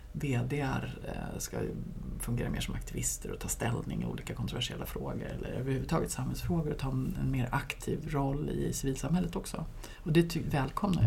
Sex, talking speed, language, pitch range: female, 155 wpm, Swedish, 135-170 Hz